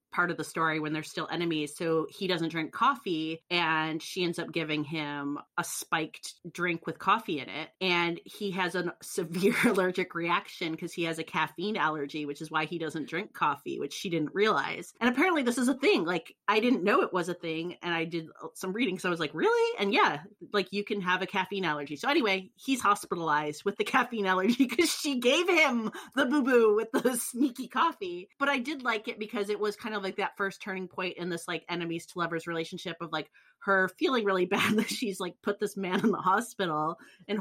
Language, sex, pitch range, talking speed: English, female, 165-210 Hz, 225 wpm